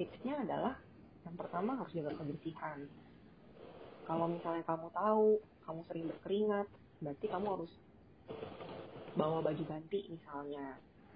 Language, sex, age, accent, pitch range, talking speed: Indonesian, female, 30-49, native, 155-190 Hz, 115 wpm